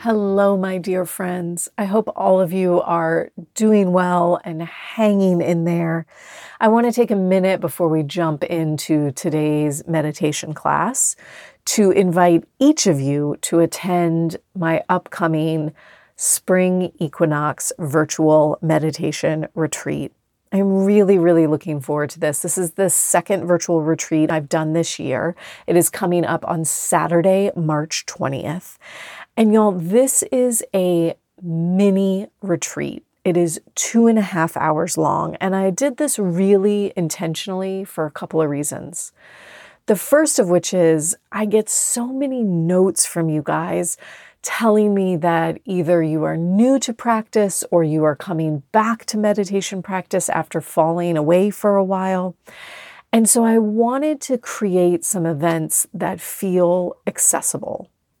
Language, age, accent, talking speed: English, 30-49, American, 145 wpm